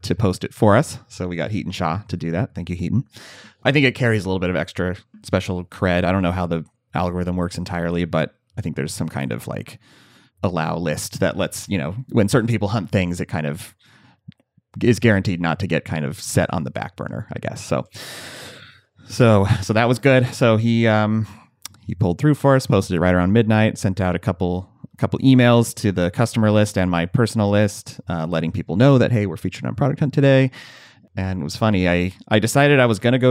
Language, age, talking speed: English, 30-49, 230 wpm